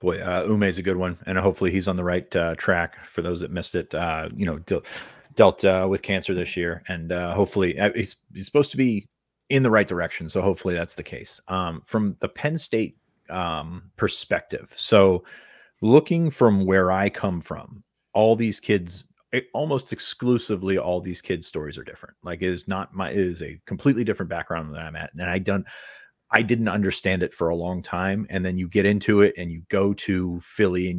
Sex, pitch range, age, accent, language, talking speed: male, 90-105 Hz, 30-49, American, English, 205 wpm